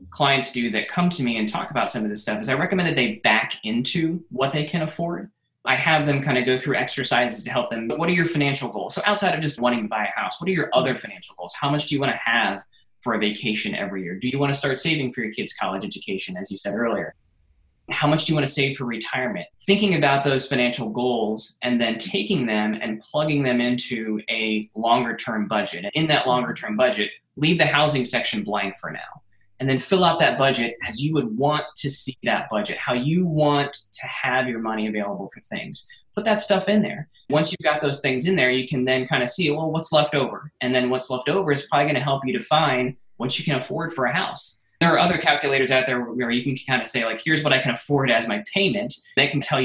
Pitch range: 115-150 Hz